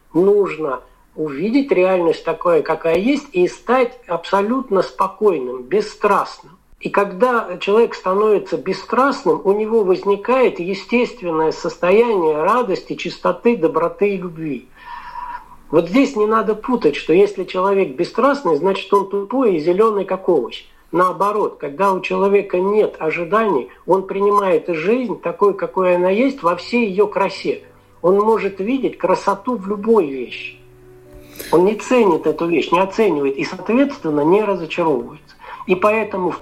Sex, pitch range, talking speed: male, 175-240 Hz, 130 wpm